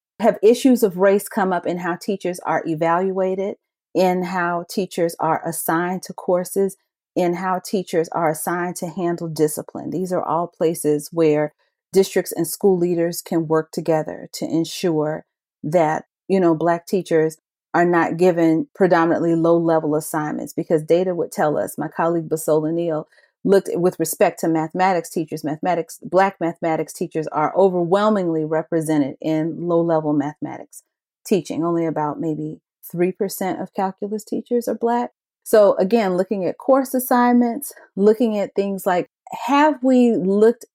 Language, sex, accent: English, female, American